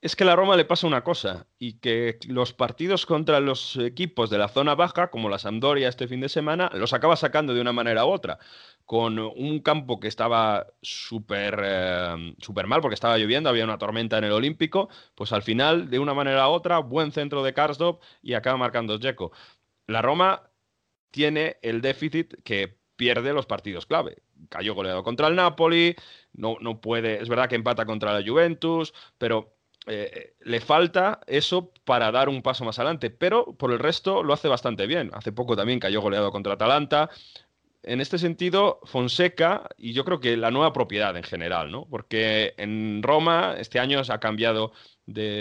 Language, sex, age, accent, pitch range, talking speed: Spanish, male, 30-49, Spanish, 110-160 Hz, 190 wpm